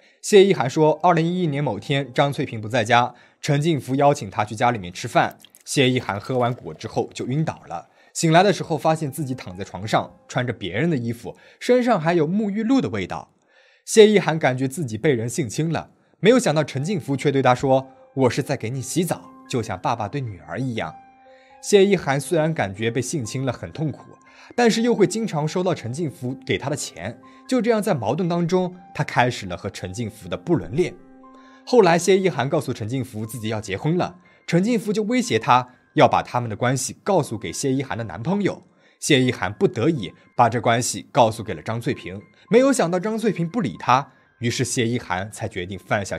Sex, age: male, 20-39